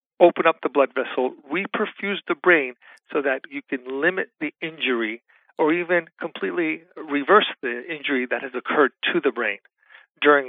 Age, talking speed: 40-59, 160 wpm